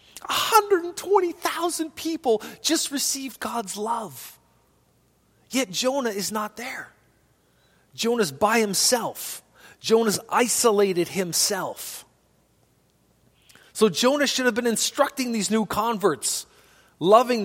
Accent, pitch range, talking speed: American, 165-235 Hz, 95 wpm